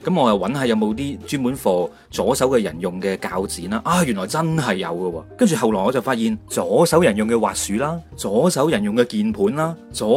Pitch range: 105-155 Hz